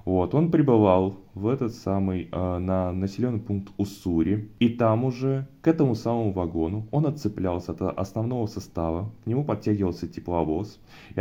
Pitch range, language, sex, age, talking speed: 90-115 Hz, Russian, male, 20-39, 150 wpm